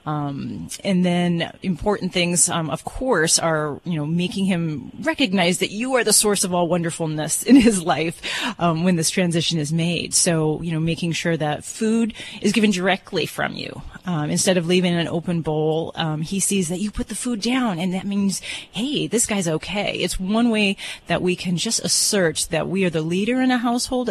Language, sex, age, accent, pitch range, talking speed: English, female, 30-49, American, 160-200 Hz, 205 wpm